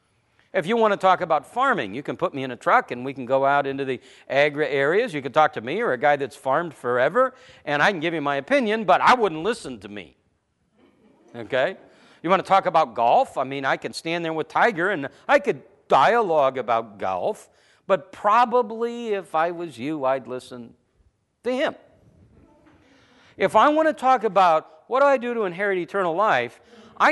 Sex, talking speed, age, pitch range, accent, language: male, 205 wpm, 50-69, 155-260 Hz, American, English